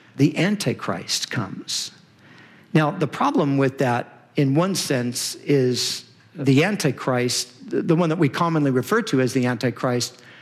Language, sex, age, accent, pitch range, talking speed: English, male, 50-69, American, 130-165 Hz, 140 wpm